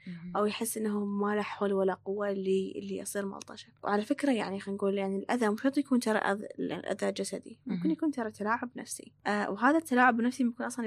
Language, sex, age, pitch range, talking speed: Arabic, female, 10-29, 205-255 Hz, 195 wpm